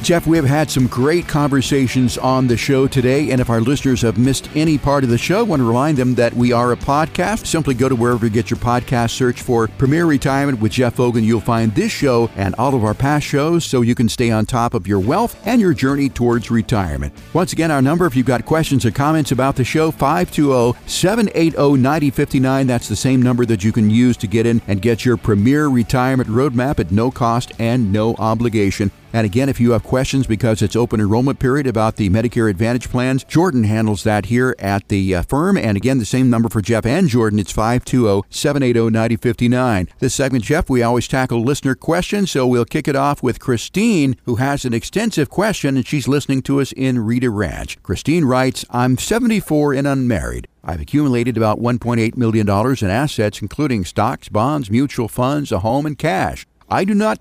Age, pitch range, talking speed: 50-69, 115-140 Hz, 205 wpm